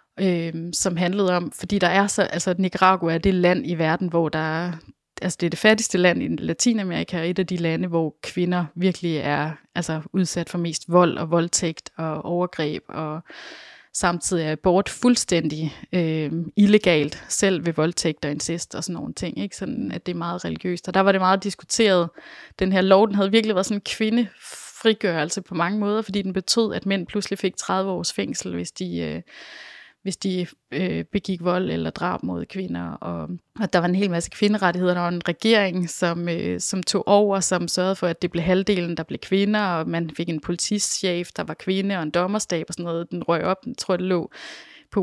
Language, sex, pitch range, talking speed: Danish, female, 170-200 Hz, 205 wpm